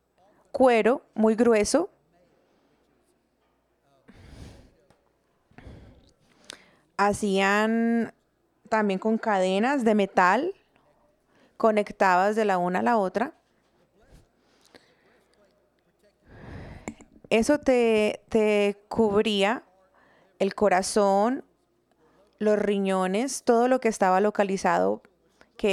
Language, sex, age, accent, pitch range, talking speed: English, female, 30-49, Colombian, 205-240 Hz, 70 wpm